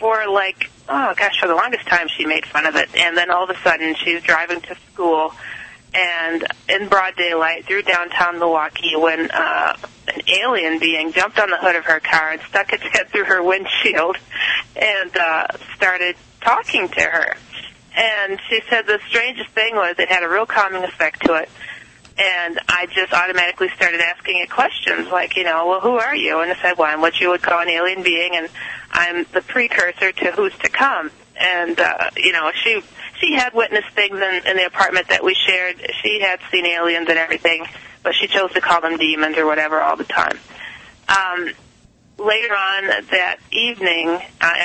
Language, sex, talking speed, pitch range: English, female, 195 wpm, 165-195 Hz